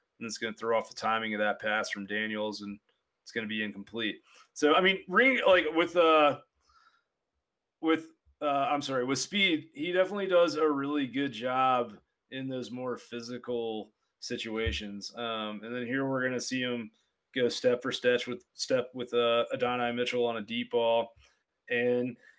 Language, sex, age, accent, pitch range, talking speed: English, male, 30-49, American, 115-140 Hz, 180 wpm